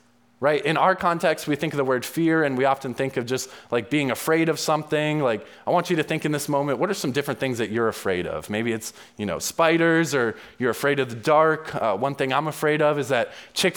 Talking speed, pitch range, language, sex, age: 255 wpm, 135-165 Hz, English, male, 20-39